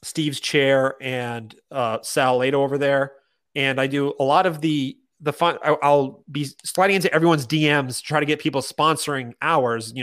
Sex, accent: male, American